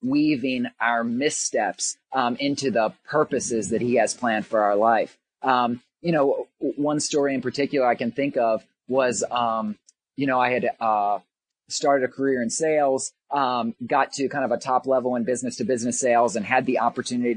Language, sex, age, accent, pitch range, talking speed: English, male, 30-49, American, 120-140 Hz, 185 wpm